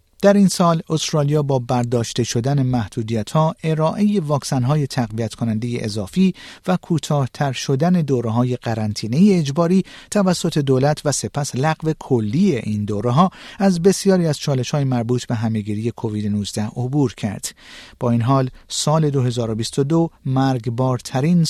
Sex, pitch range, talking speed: male, 115-160 Hz, 125 wpm